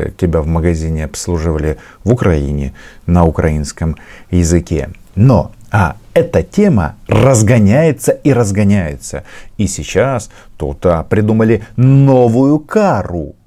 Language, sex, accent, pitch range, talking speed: Russian, male, native, 90-110 Hz, 100 wpm